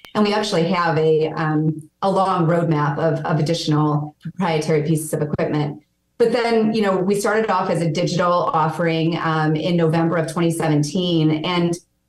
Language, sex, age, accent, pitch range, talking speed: English, female, 30-49, American, 155-180 Hz, 160 wpm